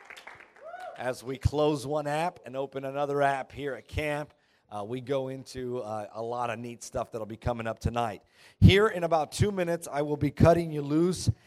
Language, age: English, 40-59